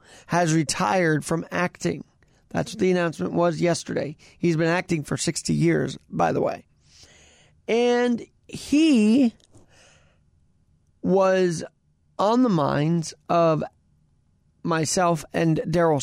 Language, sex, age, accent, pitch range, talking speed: English, male, 30-49, American, 145-190 Hz, 110 wpm